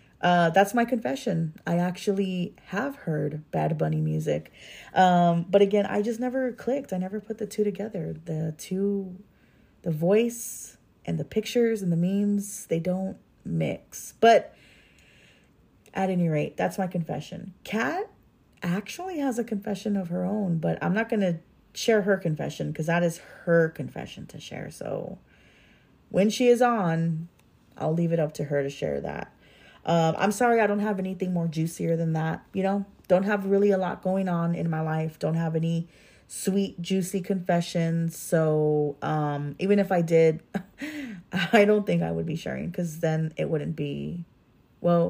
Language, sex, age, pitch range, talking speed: English, female, 30-49, 160-200 Hz, 170 wpm